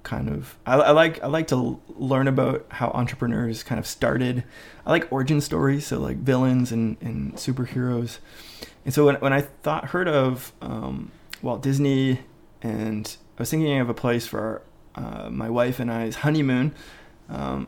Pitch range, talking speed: 115-135 Hz, 175 wpm